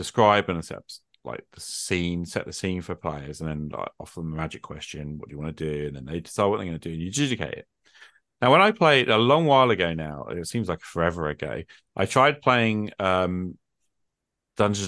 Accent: British